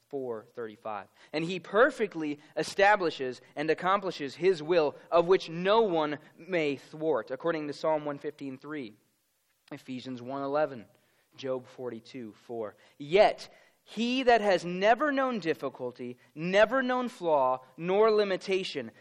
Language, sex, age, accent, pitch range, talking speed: English, male, 20-39, American, 130-185 Hz, 115 wpm